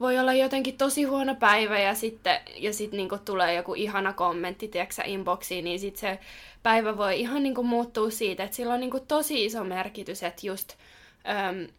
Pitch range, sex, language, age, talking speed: 190-225 Hz, female, Finnish, 10-29, 195 wpm